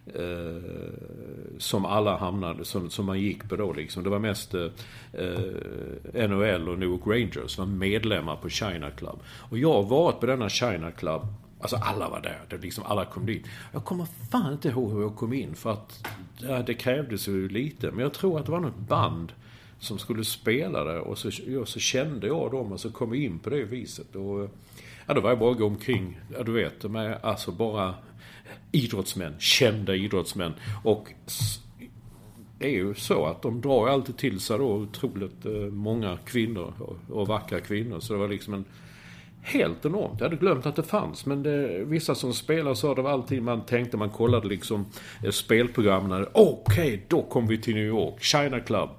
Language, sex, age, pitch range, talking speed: English, male, 50-69, 100-125 Hz, 190 wpm